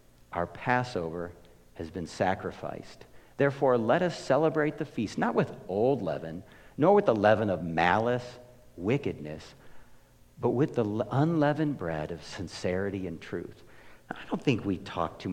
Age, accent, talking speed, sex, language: 50-69, American, 145 wpm, male, English